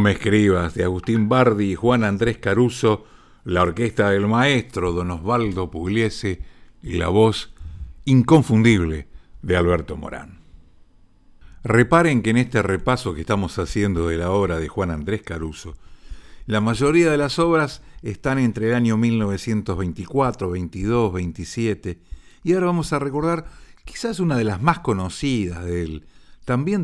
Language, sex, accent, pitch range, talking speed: Spanish, male, Argentinian, 85-115 Hz, 145 wpm